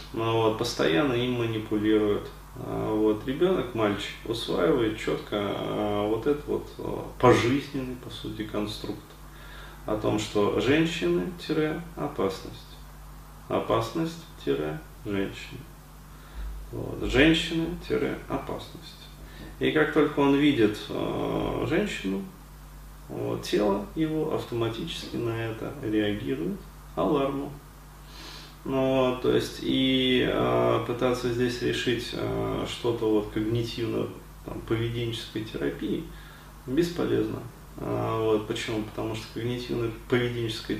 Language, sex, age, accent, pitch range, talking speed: Russian, male, 30-49, native, 105-135 Hz, 90 wpm